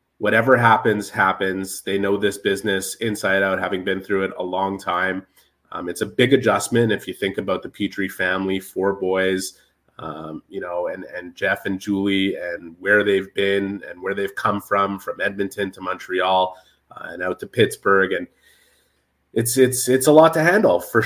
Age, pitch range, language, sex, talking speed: 30-49, 95-120 Hz, English, male, 185 wpm